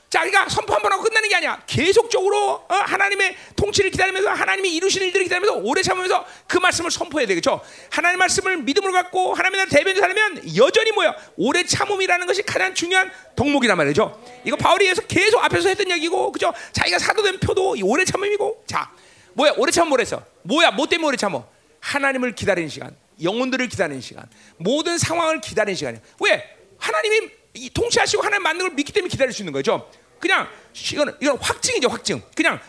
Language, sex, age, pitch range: Korean, male, 40-59, 255-390 Hz